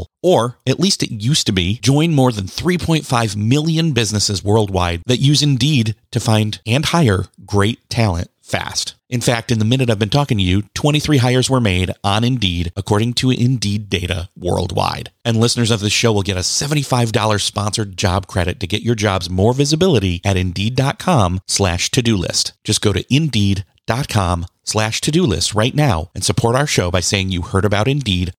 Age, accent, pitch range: 30-49, American, 100-140 Hz